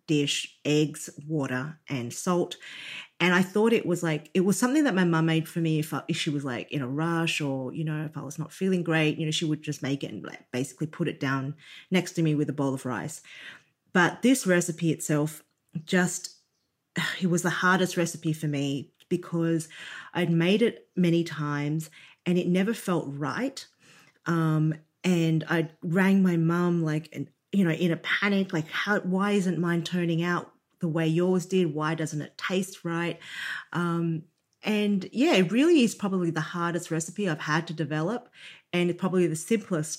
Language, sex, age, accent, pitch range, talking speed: English, female, 30-49, Australian, 155-185 Hz, 190 wpm